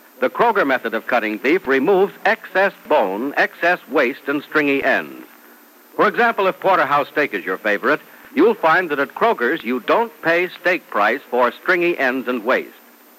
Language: English